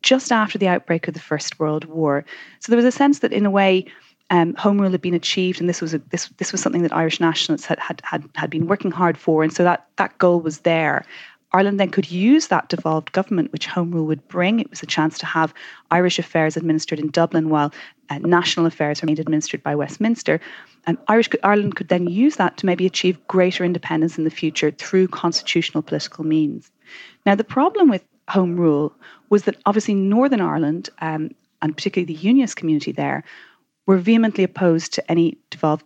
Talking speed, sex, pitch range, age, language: 210 wpm, female, 160-205 Hz, 30-49, English